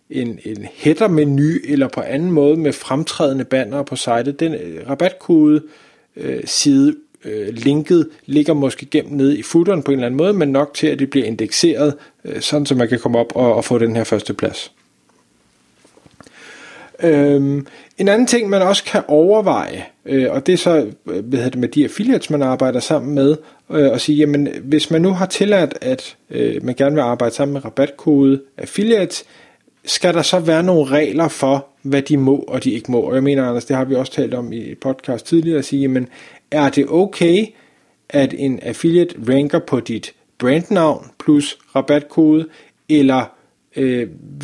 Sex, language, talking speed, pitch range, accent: male, Danish, 175 wpm, 130-155 Hz, native